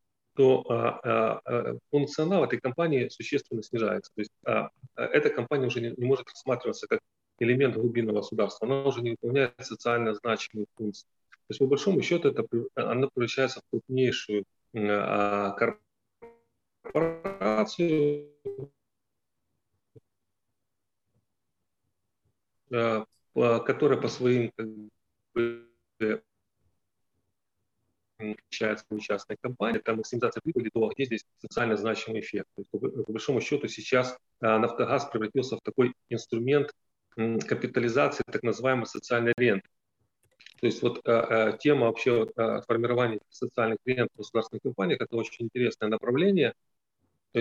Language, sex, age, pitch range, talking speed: Ukrainian, male, 30-49, 105-125 Hz, 105 wpm